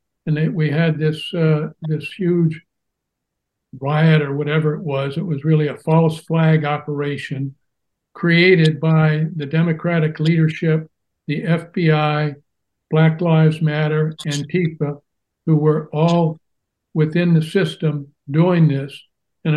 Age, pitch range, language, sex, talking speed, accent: 60-79, 150-165 Hz, English, male, 125 wpm, American